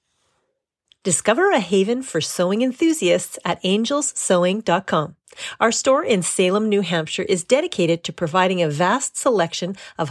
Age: 40-59